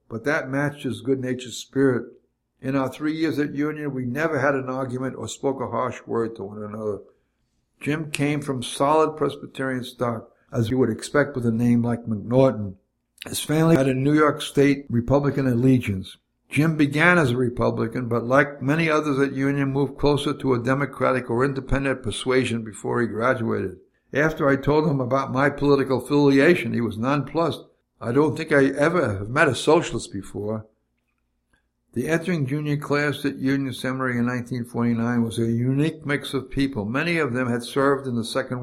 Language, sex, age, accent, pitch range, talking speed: English, male, 60-79, American, 120-145 Hz, 175 wpm